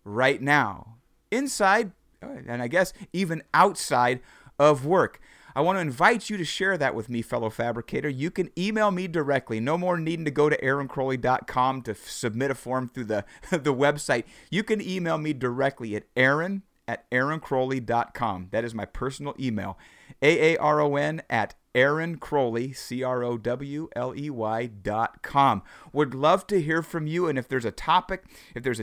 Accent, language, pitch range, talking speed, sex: American, English, 120-160 Hz, 170 wpm, male